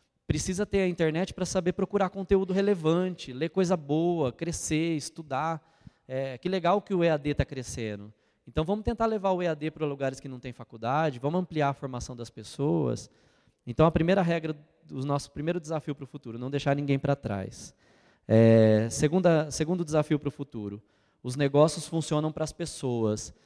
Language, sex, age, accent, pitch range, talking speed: Portuguese, male, 20-39, Brazilian, 125-160 Hz, 175 wpm